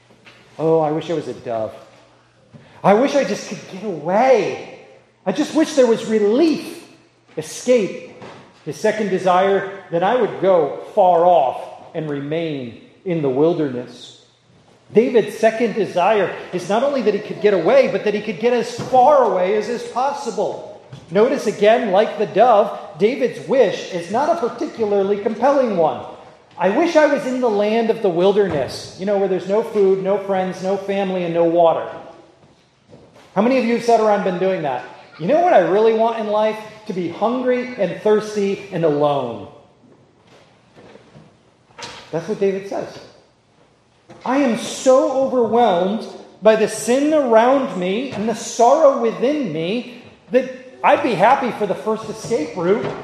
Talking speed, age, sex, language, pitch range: 165 wpm, 40-59, male, English, 185-240 Hz